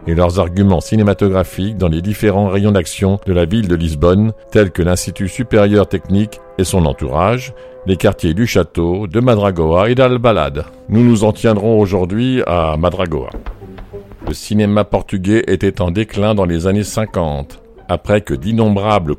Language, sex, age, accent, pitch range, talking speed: French, male, 50-69, French, 95-110 Hz, 155 wpm